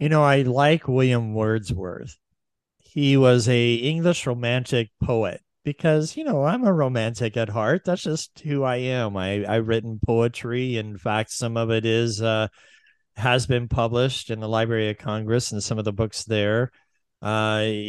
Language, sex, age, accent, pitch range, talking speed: English, male, 50-69, American, 110-130 Hz, 170 wpm